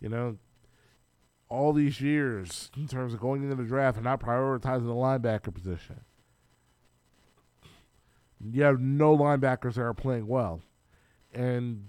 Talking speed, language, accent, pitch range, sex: 135 wpm, English, American, 115-150 Hz, male